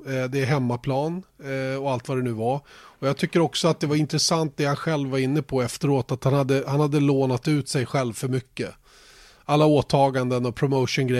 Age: 30-49